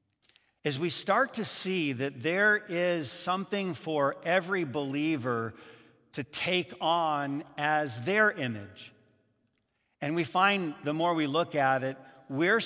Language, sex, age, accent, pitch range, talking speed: English, male, 50-69, American, 155-210 Hz, 135 wpm